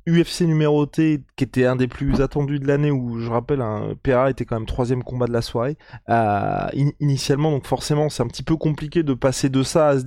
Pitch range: 130-160 Hz